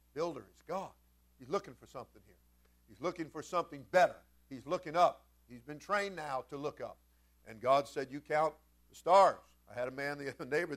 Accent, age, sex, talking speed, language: American, 50-69, male, 205 wpm, English